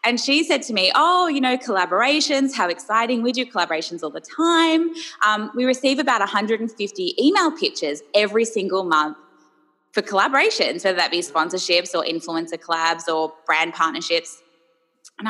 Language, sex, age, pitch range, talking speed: English, female, 20-39, 170-245 Hz, 155 wpm